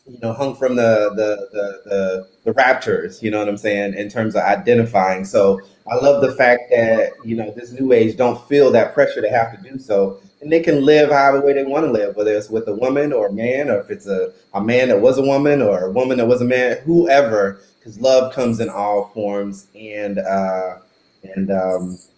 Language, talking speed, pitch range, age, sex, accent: English, 225 wpm, 100-135 Hz, 30-49, male, American